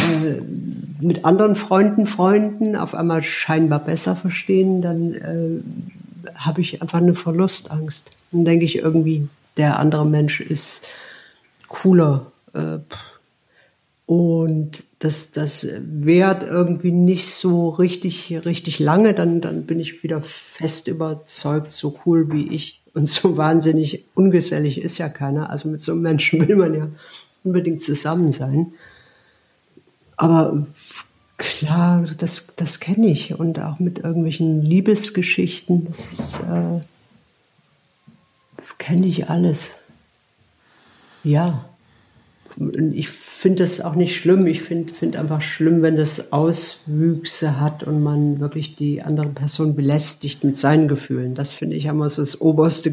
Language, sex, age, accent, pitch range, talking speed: German, female, 50-69, German, 150-175 Hz, 130 wpm